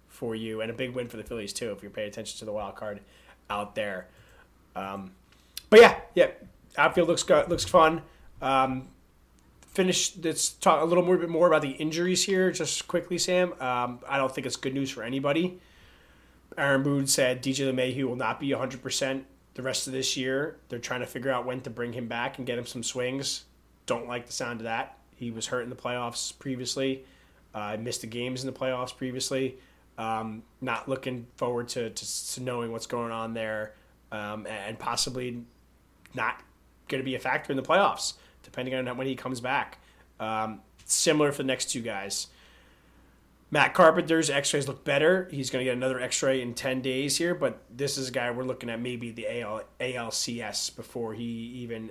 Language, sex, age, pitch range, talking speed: English, male, 30-49, 110-135 Hz, 200 wpm